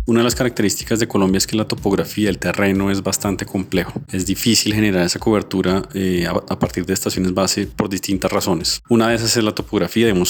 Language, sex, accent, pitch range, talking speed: Spanish, male, Colombian, 90-105 Hz, 210 wpm